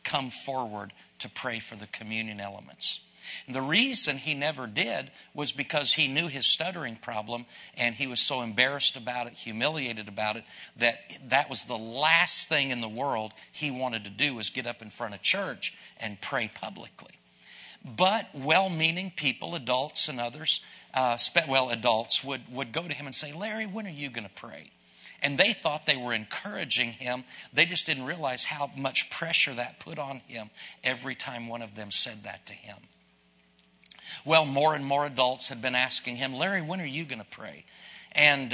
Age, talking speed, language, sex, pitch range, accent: 50-69, 190 wpm, English, male, 120-150 Hz, American